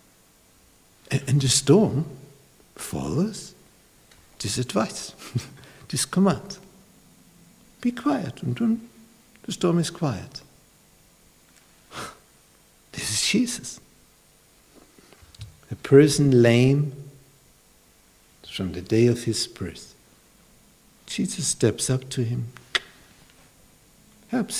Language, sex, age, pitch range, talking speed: English, male, 60-79, 125-185 Hz, 80 wpm